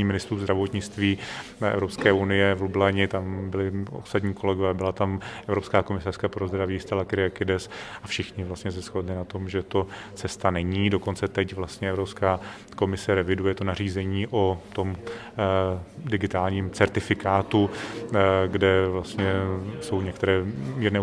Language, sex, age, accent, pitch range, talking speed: Czech, male, 30-49, native, 95-100 Hz, 130 wpm